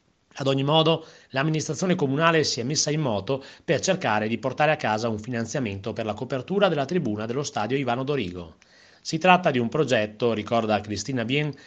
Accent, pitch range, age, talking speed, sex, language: native, 110-160 Hz, 30-49, 180 wpm, male, Italian